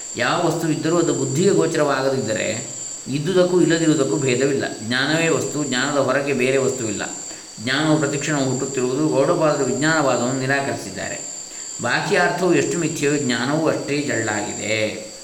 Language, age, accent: Kannada, 20-39, native